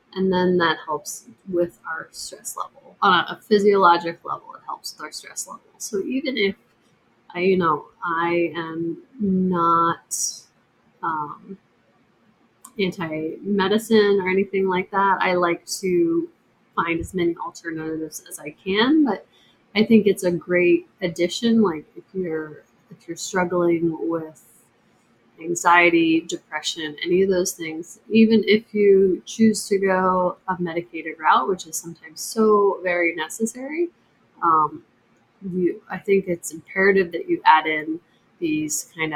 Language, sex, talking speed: English, female, 135 wpm